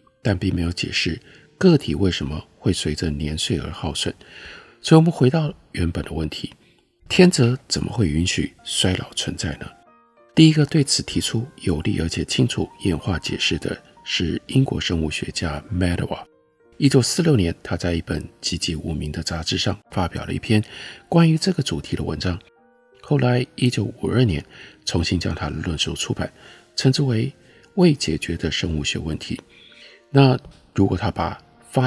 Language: Chinese